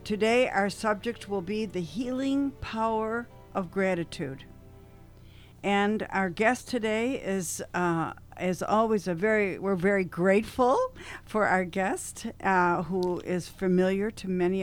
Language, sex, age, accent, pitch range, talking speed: English, female, 60-79, American, 170-225 Hz, 130 wpm